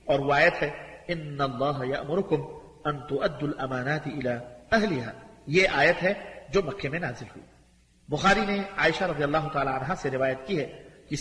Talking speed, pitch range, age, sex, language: 165 wpm, 135-175 Hz, 50-69, male, English